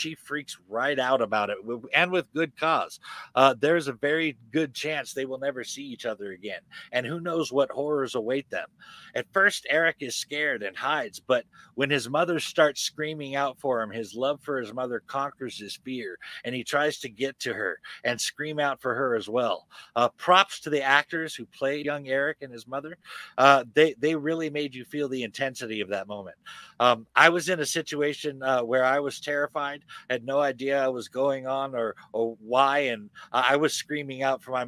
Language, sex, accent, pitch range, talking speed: English, male, American, 130-150 Hz, 210 wpm